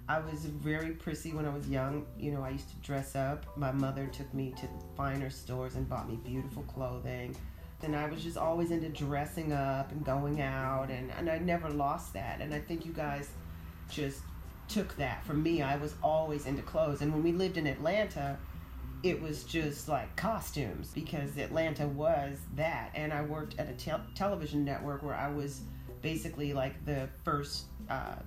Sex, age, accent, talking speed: female, 40-59, American, 190 wpm